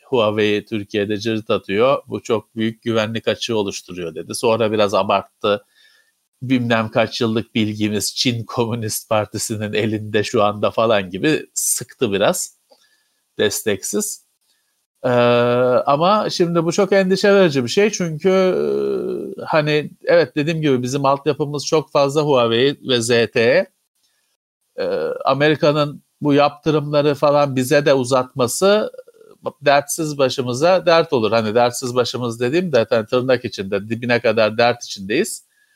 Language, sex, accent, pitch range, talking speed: Turkish, male, native, 120-175 Hz, 125 wpm